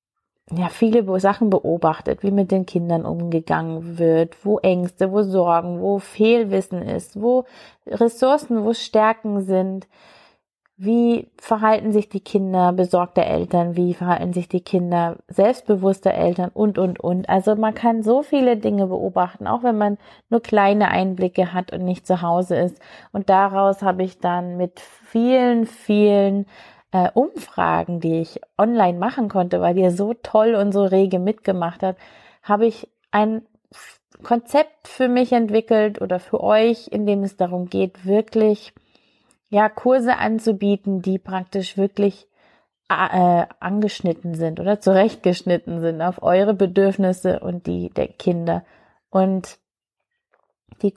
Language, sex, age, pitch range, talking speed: German, female, 30-49, 180-220 Hz, 140 wpm